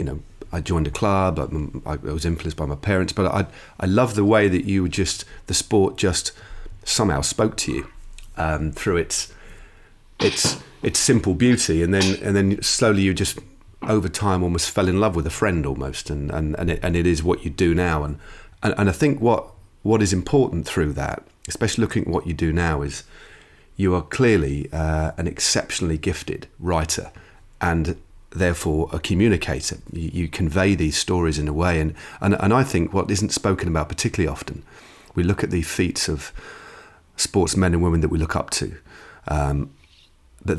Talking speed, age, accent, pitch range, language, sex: 195 wpm, 40-59, British, 80-100 Hz, English, male